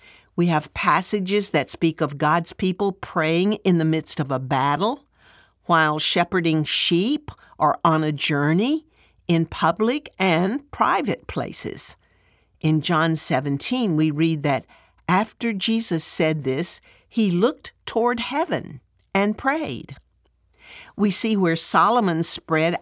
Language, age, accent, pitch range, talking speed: English, 60-79, American, 150-205 Hz, 125 wpm